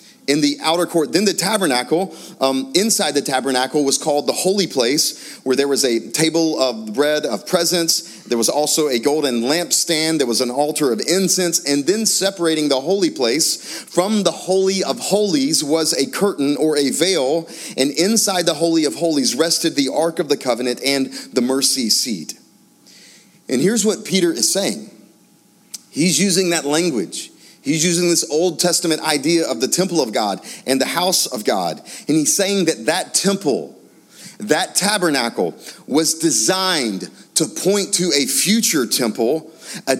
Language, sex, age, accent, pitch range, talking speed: English, male, 30-49, American, 145-190 Hz, 170 wpm